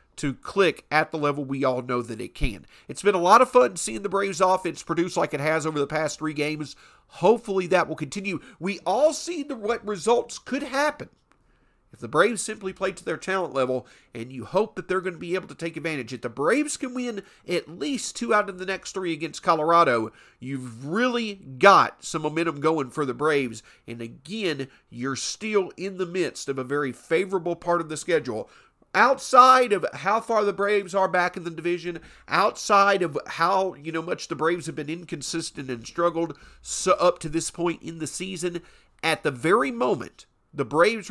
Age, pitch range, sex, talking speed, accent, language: 50-69, 140-195 Hz, male, 200 wpm, American, English